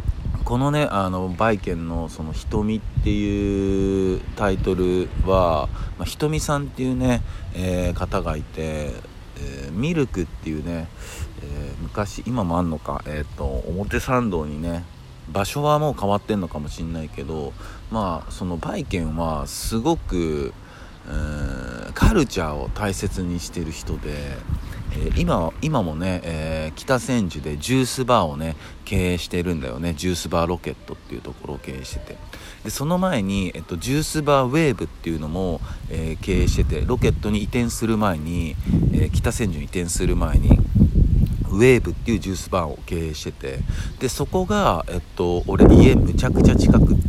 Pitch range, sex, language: 80-105 Hz, male, Japanese